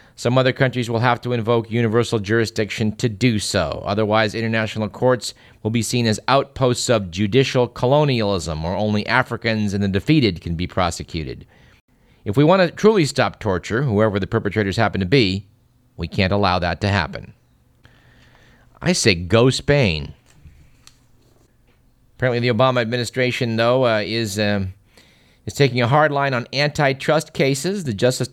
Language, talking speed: English, 155 wpm